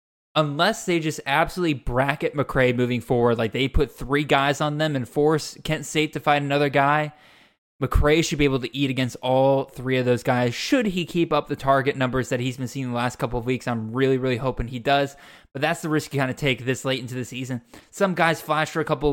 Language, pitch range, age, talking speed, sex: English, 130-155 Hz, 20-39, 240 wpm, male